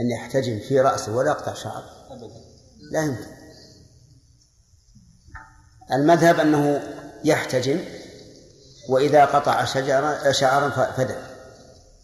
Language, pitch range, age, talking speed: Arabic, 120-140 Hz, 50-69, 85 wpm